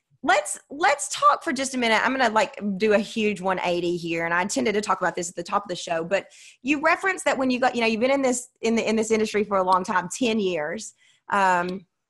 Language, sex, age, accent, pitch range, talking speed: English, female, 20-39, American, 185-250 Hz, 270 wpm